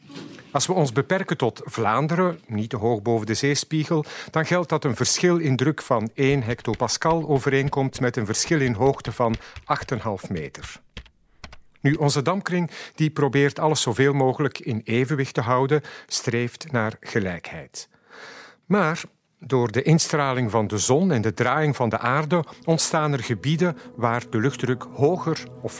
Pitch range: 115-150 Hz